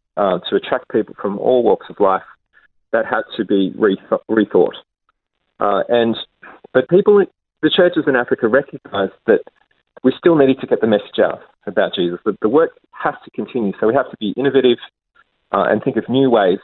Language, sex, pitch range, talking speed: English, male, 105-135 Hz, 195 wpm